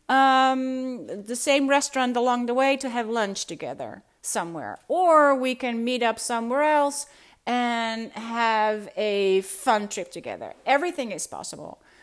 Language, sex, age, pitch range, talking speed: Dutch, female, 40-59, 195-275 Hz, 140 wpm